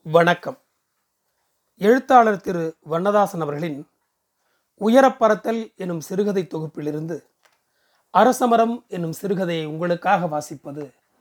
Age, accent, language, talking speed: 30-49, native, Tamil, 75 wpm